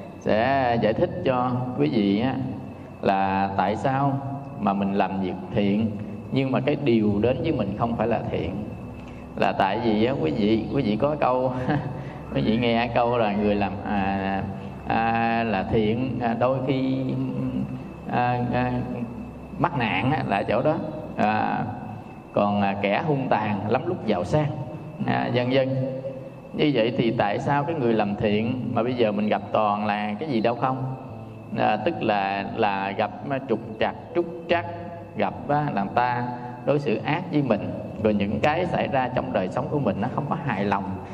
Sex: male